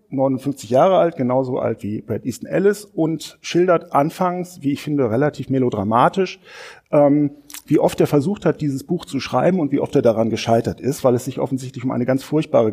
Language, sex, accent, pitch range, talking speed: German, male, German, 120-150 Hz, 195 wpm